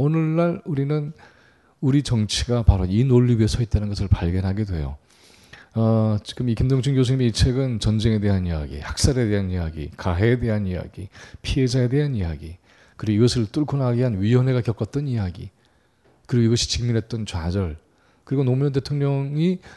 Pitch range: 100-130 Hz